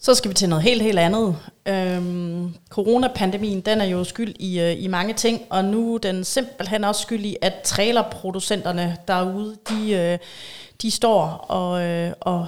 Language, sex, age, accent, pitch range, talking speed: Danish, female, 30-49, native, 180-220 Hz, 165 wpm